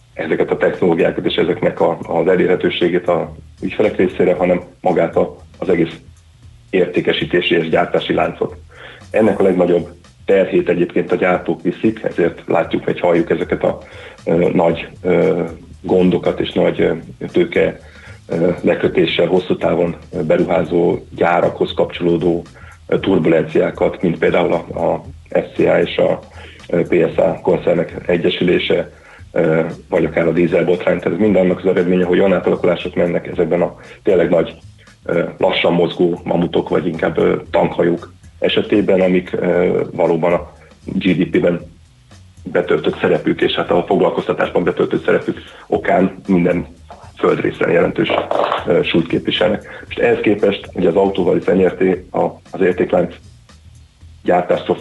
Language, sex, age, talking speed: Hungarian, male, 40-59, 115 wpm